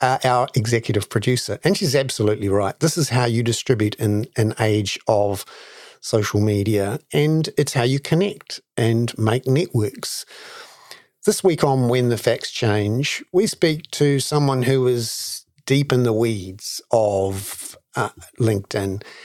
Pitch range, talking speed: 110-150 Hz, 145 wpm